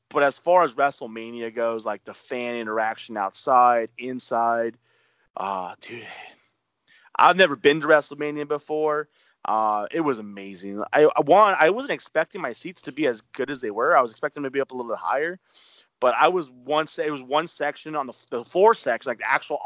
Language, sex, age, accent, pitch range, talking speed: English, male, 20-39, American, 110-140 Hz, 200 wpm